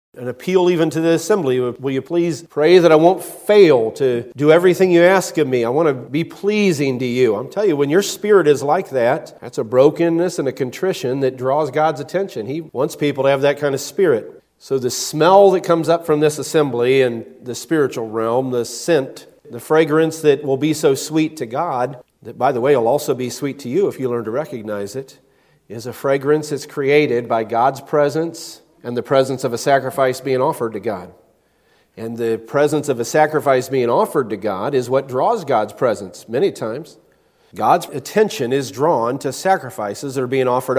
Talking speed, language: 205 wpm, English